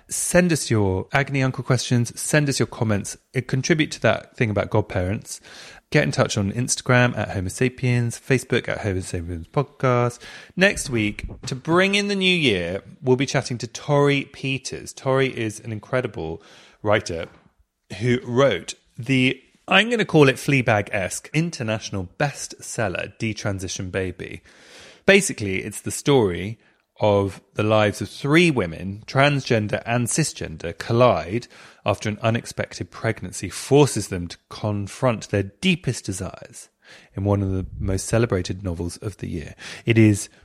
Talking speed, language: 145 wpm, English